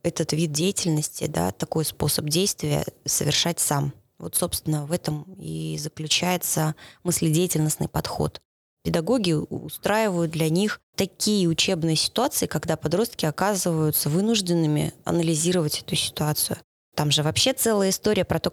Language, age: Russian, 20-39